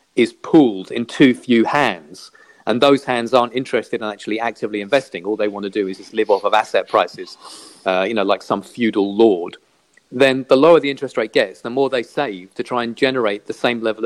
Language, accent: English, British